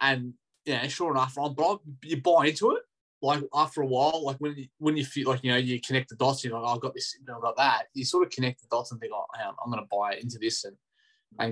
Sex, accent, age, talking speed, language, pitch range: male, Australian, 20-39, 270 wpm, English, 120-145 Hz